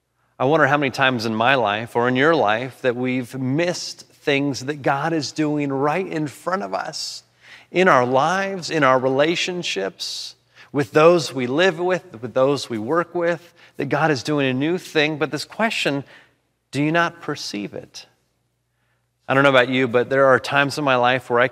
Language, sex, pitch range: English, male, 125-160 Hz